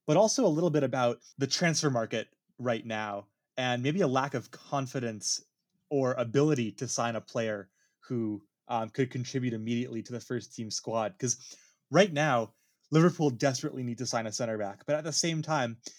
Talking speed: 180 wpm